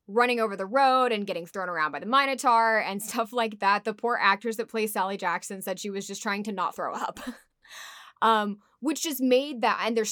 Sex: female